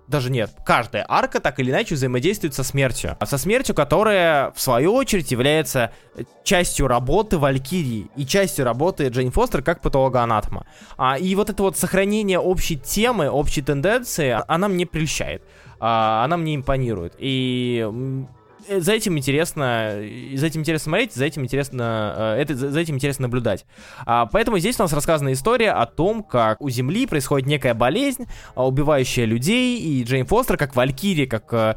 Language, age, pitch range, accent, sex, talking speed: Russian, 20-39, 125-165 Hz, native, male, 155 wpm